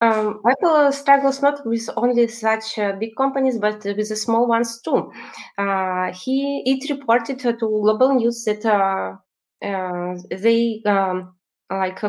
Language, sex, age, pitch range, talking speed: English, female, 20-39, 195-235 Hz, 150 wpm